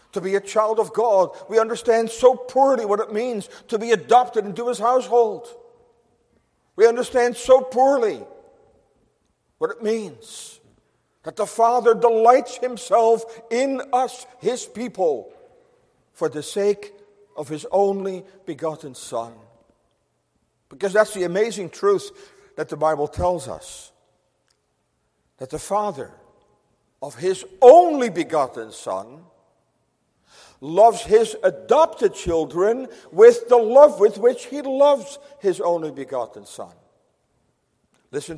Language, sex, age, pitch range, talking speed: English, male, 50-69, 160-250 Hz, 120 wpm